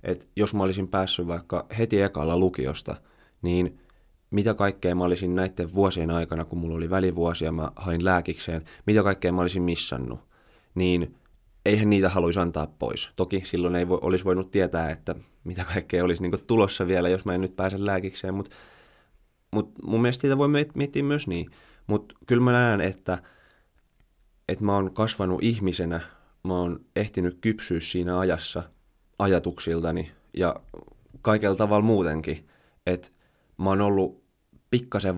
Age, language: 20-39, Finnish